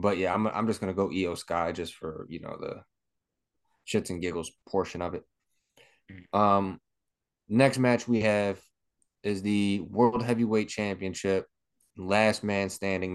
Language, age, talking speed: English, 20-39, 155 wpm